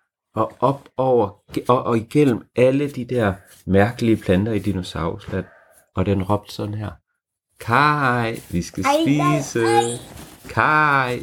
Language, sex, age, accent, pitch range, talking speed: Danish, male, 30-49, native, 95-125 Hz, 125 wpm